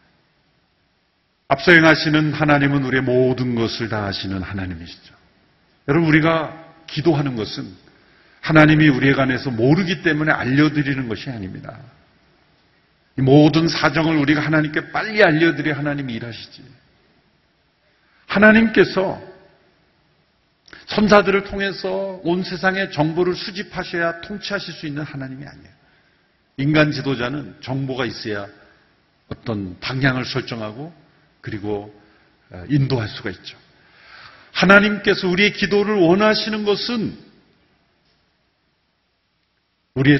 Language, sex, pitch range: Korean, male, 110-165 Hz